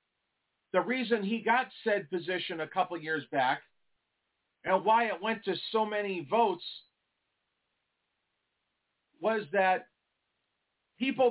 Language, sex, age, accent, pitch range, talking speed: English, male, 50-69, American, 180-225 Hz, 110 wpm